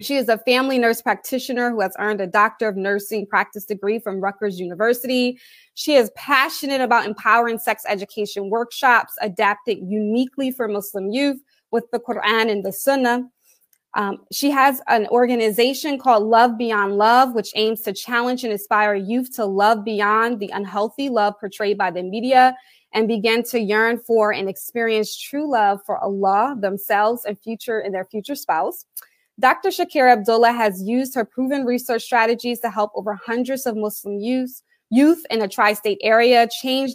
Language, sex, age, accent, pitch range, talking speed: English, female, 20-39, American, 210-250 Hz, 165 wpm